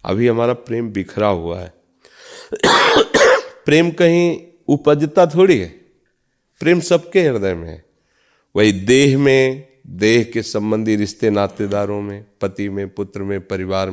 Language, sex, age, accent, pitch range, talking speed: Hindi, male, 40-59, native, 100-150 Hz, 130 wpm